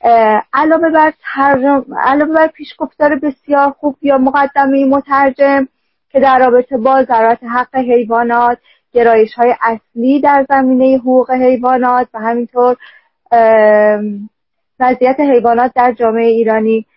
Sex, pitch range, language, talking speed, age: female, 230-280 Hz, Persian, 105 wpm, 40-59